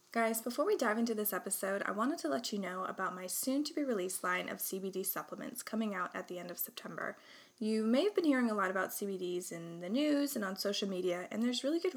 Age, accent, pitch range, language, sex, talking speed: 20-39, American, 180-230 Hz, English, female, 235 wpm